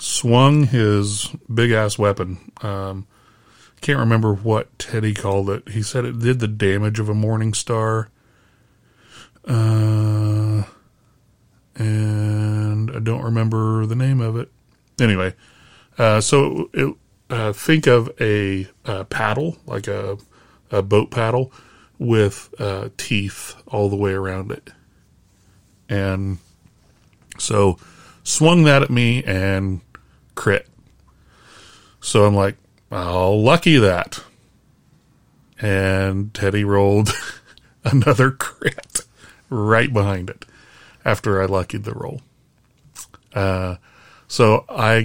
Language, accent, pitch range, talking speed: English, American, 100-115 Hz, 110 wpm